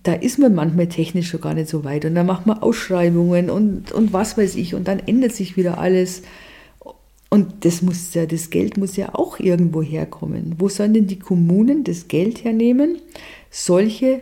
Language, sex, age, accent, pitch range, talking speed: German, female, 50-69, German, 155-200 Hz, 185 wpm